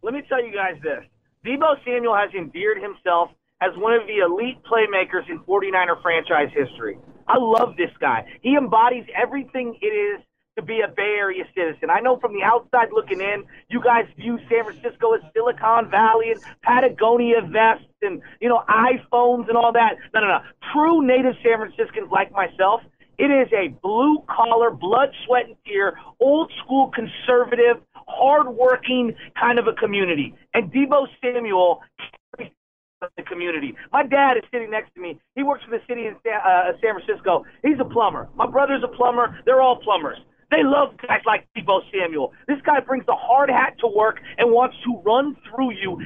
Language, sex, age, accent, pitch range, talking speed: English, male, 30-49, American, 220-280 Hz, 180 wpm